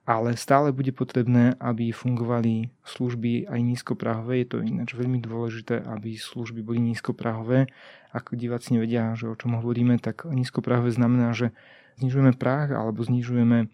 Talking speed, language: 140 wpm, Slovak